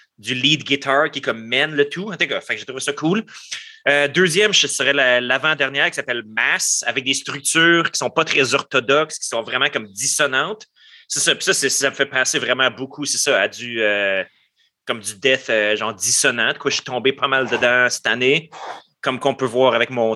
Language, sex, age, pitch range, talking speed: French, male, 30-49, 125-165 Hz, 225 wpm